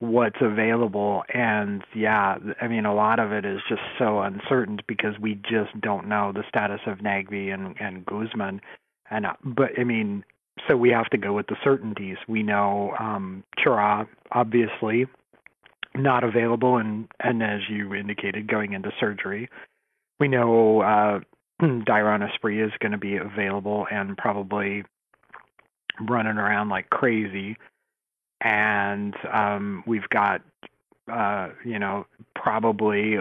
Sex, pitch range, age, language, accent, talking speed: male, 100-115 Hz, 40-59, English, American, 140 wpm